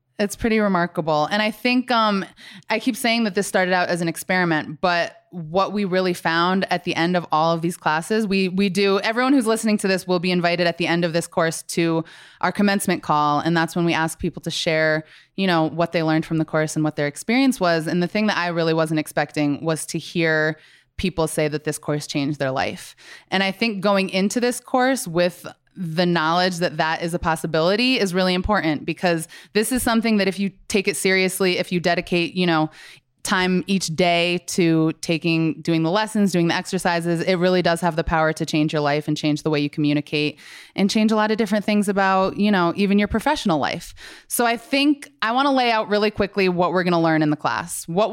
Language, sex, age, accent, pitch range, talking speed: English, female, 20-39, American, 160-205 Hz, 230 wpm